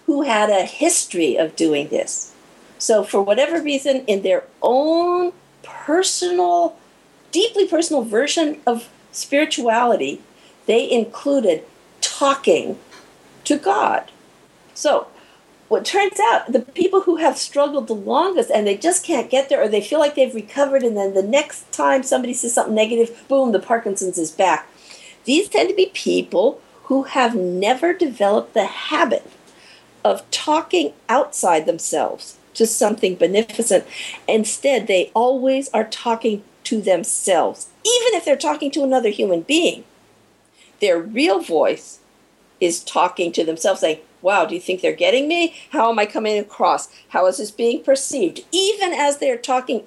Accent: American